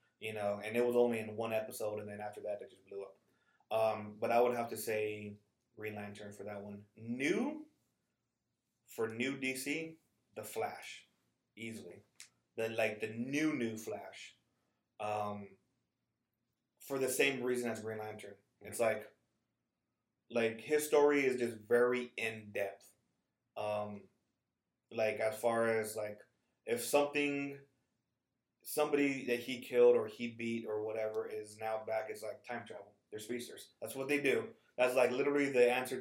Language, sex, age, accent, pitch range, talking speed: English, male, 20-39, American, 105-125 Hz, 155 wpm